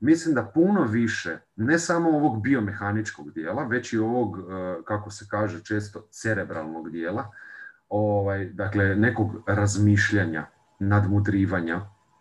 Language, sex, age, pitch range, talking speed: Croatian, male, 40-59, 100-125 Hz, 115 wpm